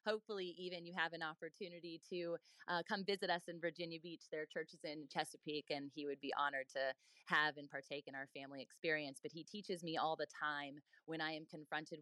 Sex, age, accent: female, 20-39, American